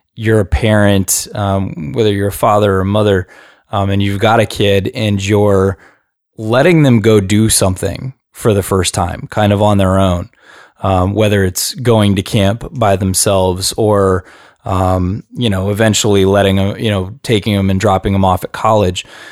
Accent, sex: American, male